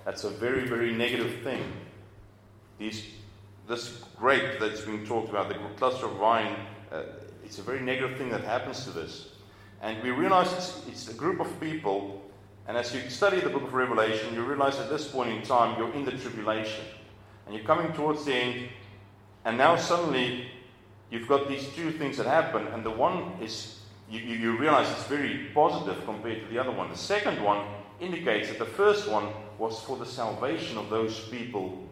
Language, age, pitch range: English, 40-59, 105-130 Hz